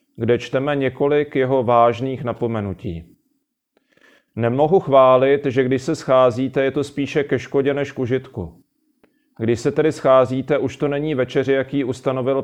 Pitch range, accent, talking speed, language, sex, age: 125-150 Hz, native, 140 wpm, Czech, male, 40-59